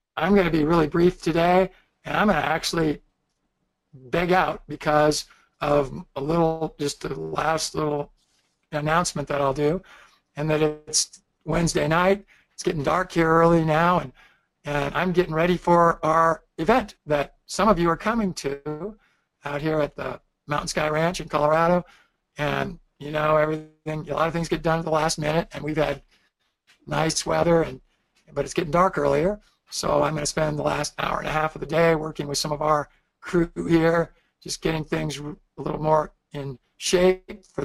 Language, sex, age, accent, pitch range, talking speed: English, male, 60-79, American, 150-180 Hz, 185 wpm